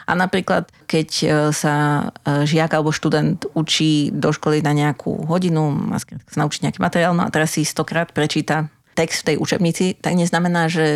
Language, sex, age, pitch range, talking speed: Slovak, female, 30-49, 150-170 Hz, 165 wpm